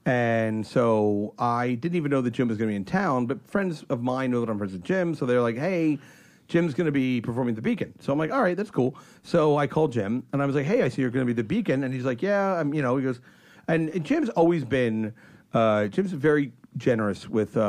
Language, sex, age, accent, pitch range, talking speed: English, male, 40-59, American, 115-145 Hz, 255 wpm